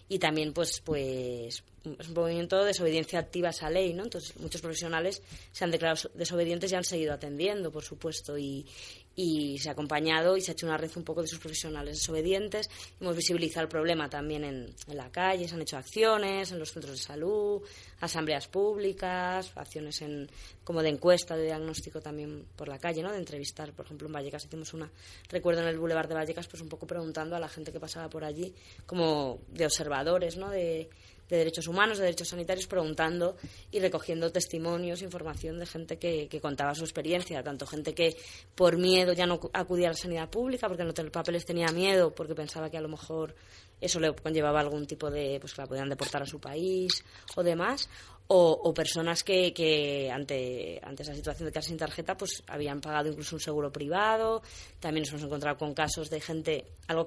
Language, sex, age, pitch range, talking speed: Spanish, female, 20-39, 150-175 Hz, 205 wpm